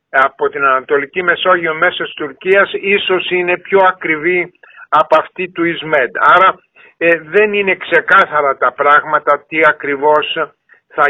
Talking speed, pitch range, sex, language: 135 wpm, 165-210 Hz, male, Greek